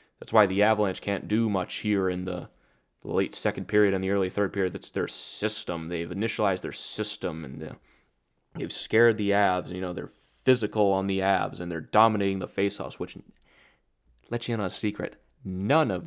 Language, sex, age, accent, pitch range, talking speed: English, male, 20-39, American, 95-130 Hz, 190 wpm